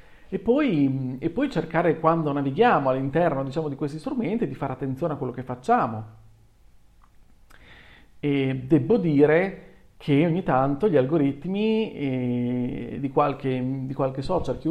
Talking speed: 135 wpm